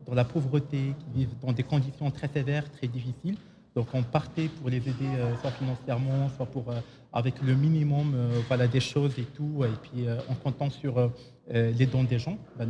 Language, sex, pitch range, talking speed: Arabic, male, 125-145 Hz, 215 wpm